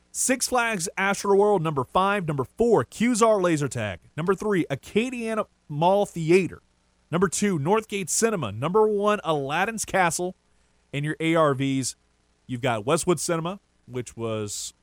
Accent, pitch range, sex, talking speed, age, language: American, 115-185 Hz, male, 130 wpm, 30-49, English